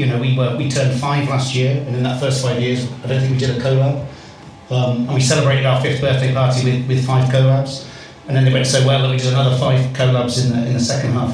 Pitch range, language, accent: 125-140 Hz, English, British